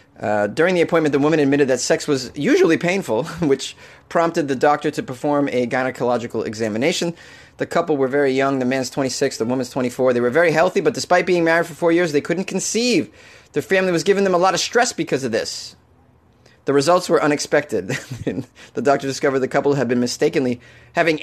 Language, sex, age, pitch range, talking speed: English, male, 30-49, 130-175 Hz, 200 wpm